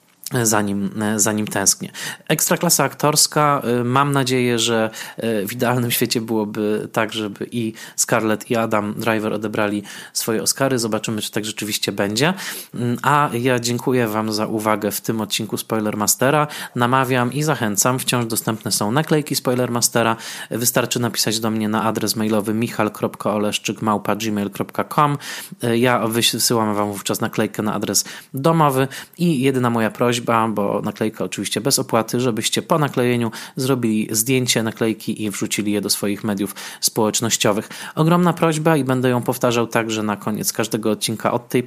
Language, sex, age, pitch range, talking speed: Polish, male, 20-39, 110-130 Hz, 145 wpm